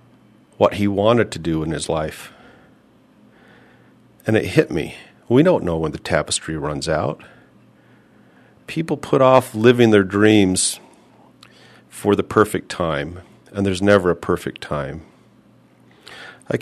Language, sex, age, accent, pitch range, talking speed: English, male, 50-69, American, 90-105 Hz, 135 wpm